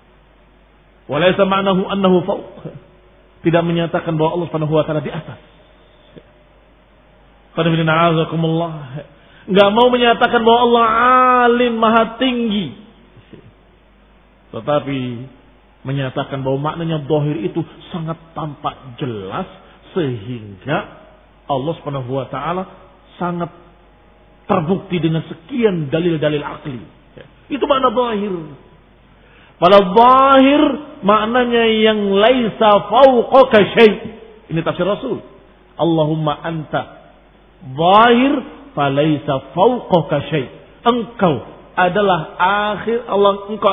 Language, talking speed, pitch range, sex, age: Indonesian, 80 wpm, 145-210 Hz, male, 40-59